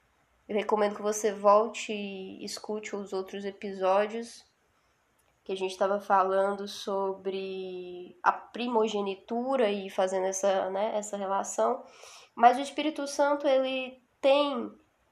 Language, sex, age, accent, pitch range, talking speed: Portuguese, female, 10-29, Brazilian, 205-270 Hz, 110 wpm